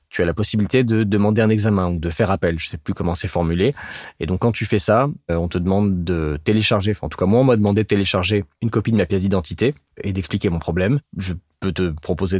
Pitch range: 90-115 Hz